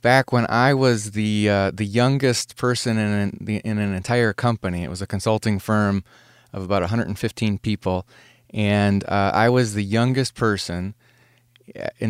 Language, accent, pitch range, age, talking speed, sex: English, American, 100-120 Hz, 30-49, 160 wpm, male